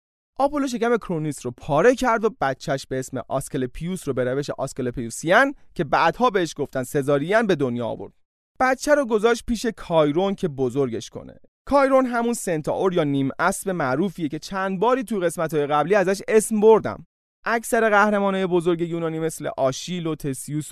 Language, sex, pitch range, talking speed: Persian, male, 140-225 Hz, 160 wpm